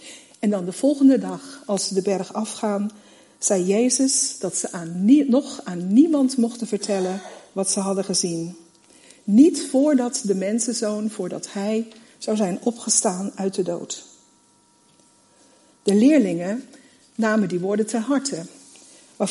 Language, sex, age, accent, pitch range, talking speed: Dutch, female, 50-69, Dutch, 195-250 Hz, 135 wpm